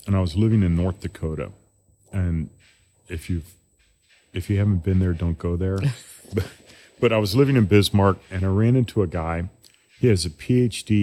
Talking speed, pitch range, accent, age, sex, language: 190 wpm, 90-110 Hz, American, 40-59, male, English